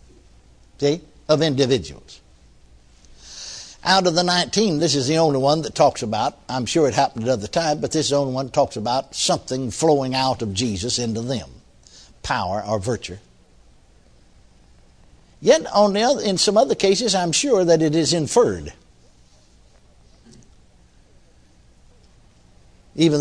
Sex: male